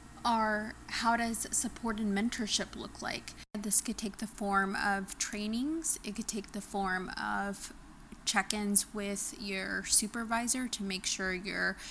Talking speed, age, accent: 145 wpm, 20-39, American